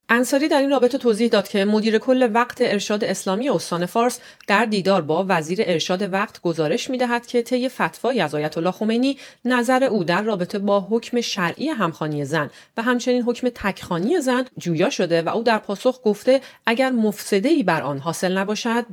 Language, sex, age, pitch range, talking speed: Persian, female, 40-59, 170-230 Hz, 180 wpm